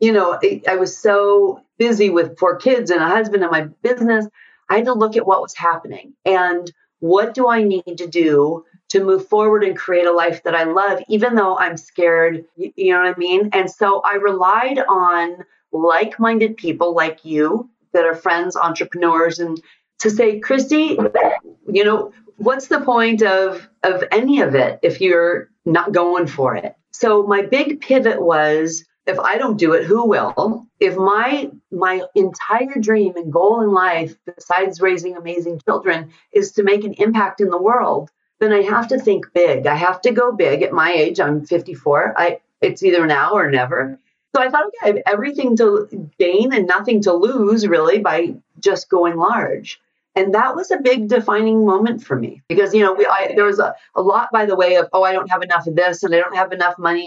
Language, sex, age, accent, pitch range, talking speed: English, female, 40-59, American, 175-220 Hz, 200 wpm